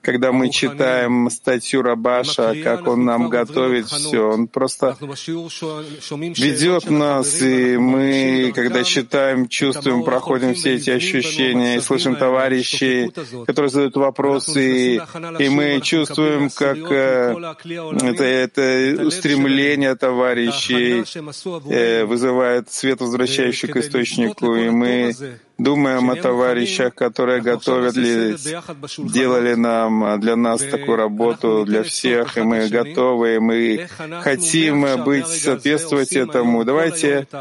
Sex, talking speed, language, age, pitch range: male, 105 wpm, Russian, 30-49, 125-140 Hz